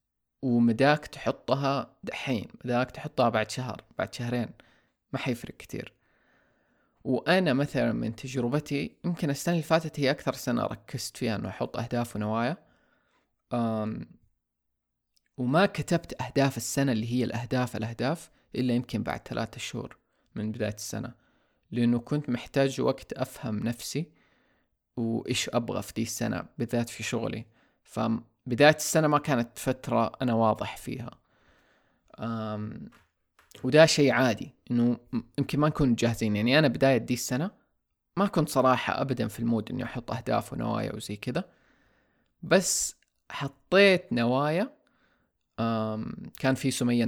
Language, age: Arabic, 20-39